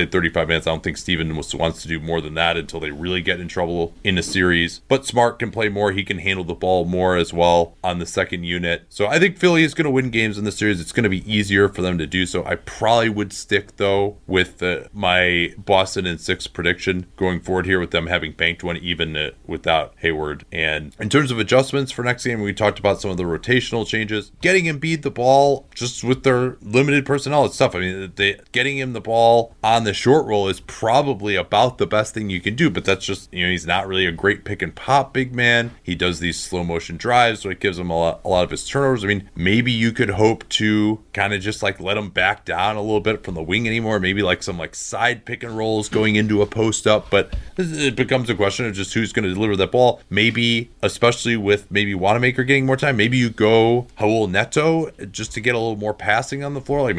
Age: 30-49